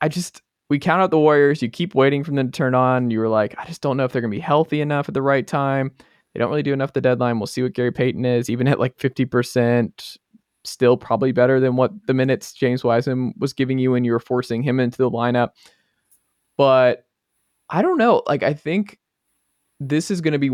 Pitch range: 110-140 Hz